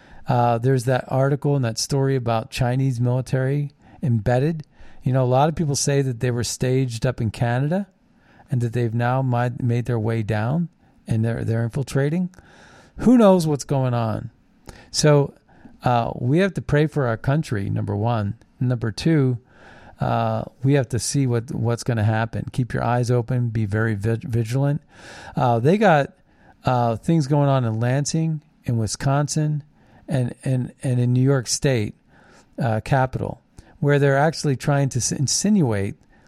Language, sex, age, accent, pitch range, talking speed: English, male, 40-59, American, 120-150 Hz, 165 wpm